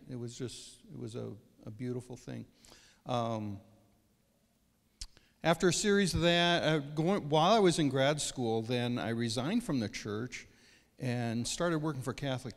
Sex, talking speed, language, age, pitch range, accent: male, 160 wpm, English, 50-69, 120-165 Hz, American